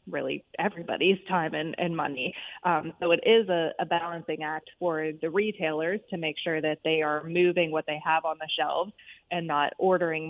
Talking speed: 190 wpm